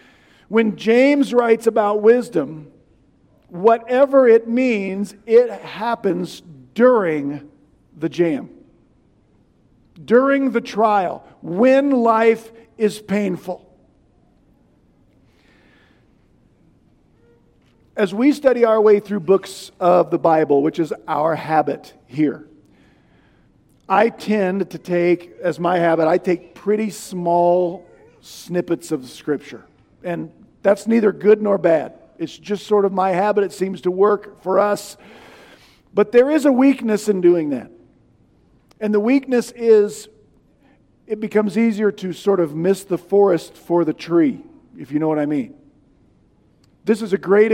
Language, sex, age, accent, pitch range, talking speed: English, male, 50-69, American, 175-225 Hz, 125 wpm